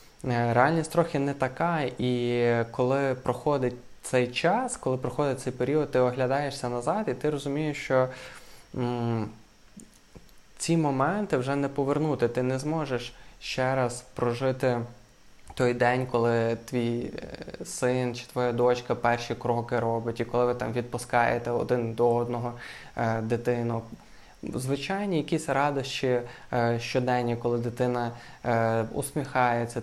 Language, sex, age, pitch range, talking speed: Ukrainian, male, 20-39, 120-135 Hz, 125 wpm